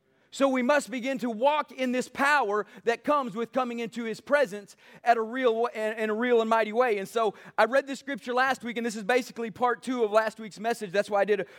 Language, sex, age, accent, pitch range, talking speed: English, male, 30-49, American, 225-270 Hz, 230 wpm